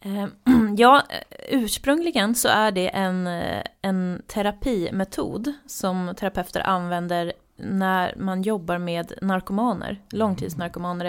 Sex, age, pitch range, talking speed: female, 20-39, 185-230 Hz, 90 wpm